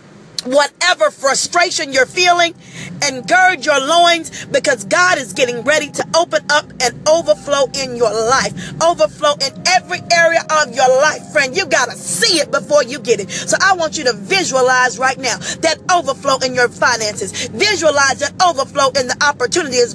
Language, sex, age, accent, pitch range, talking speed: English, female, 40-59, American, 245-315 Hz, 170 wpm